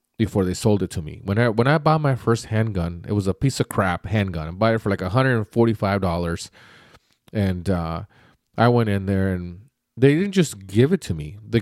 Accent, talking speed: American, 215 wpm